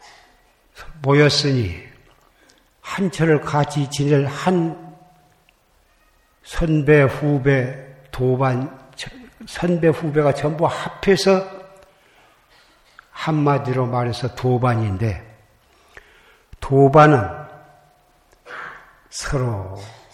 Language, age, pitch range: Korean, 60-79, 125-150 Hz